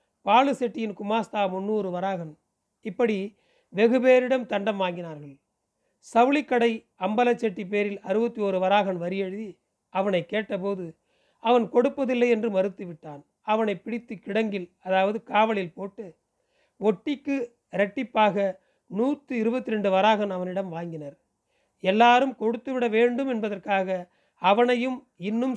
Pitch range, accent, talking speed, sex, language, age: 190-235 Hz, native, 110 wpm, male, Tamil, 40-59